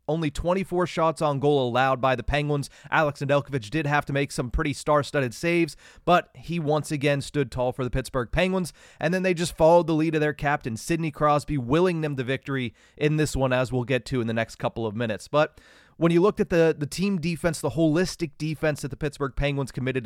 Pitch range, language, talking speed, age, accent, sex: 130-155 Hz, English, 225 wpm, 30-49, American, male